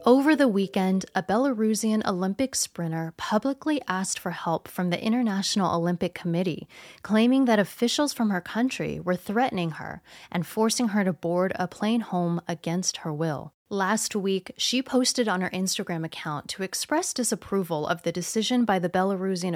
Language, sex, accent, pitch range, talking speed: English, female, American, 175-220 Hz, 165 wpm